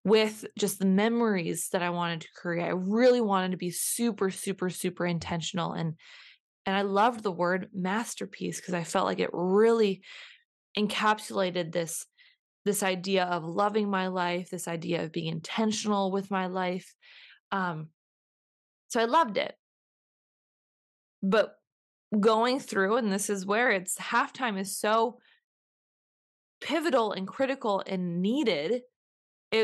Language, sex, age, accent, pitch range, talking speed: English, female, 20-39, American, 185-230 Hz, 140 wpm